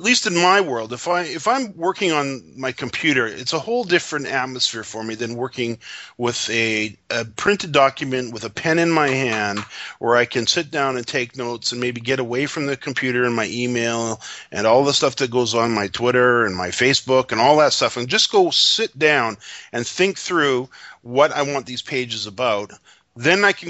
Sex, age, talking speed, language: male, 40-59, 215 wpm, English